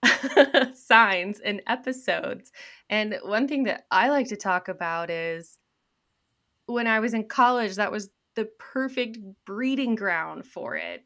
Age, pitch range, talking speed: 20-39, 180-220 Hz, 140 wpm